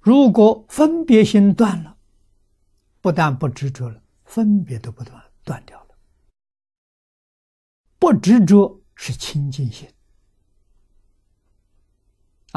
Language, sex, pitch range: Chinese, male, 95-150 Hz